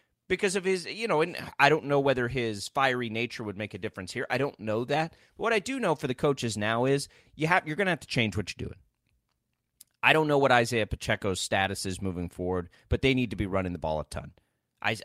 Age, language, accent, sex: 30-49, English, American, male